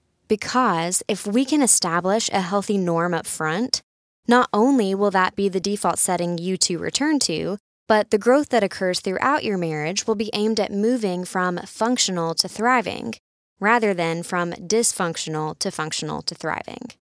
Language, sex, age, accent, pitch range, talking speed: English, female, 20-39, American, 180-225 Hz, 165 wpm